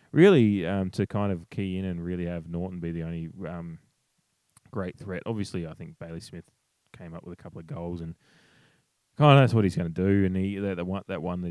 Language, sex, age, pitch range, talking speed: English, male, 20-39, 85-100 Hz, 240 wpm